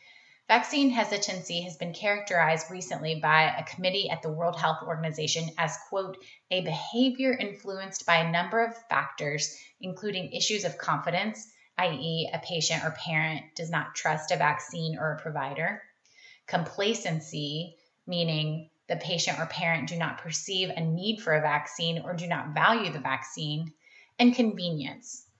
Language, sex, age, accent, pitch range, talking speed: English, female, 20-39, American, 160-200 Hz, 150 wpm